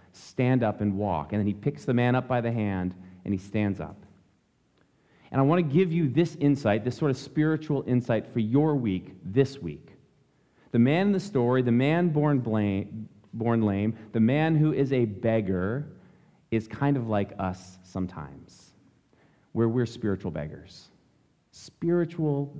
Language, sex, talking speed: English, male, 165 wpm